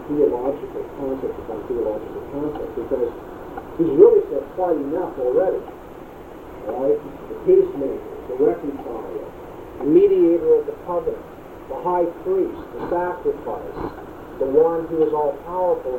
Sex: male